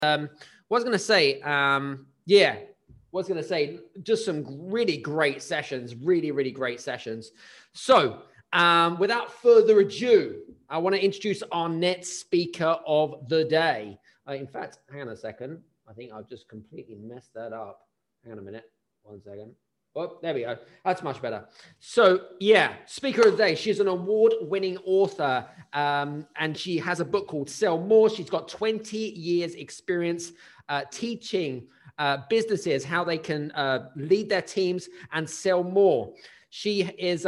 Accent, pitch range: British, 145-200 Hz